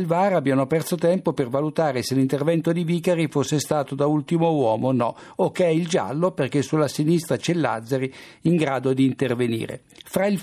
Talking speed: 185 wpm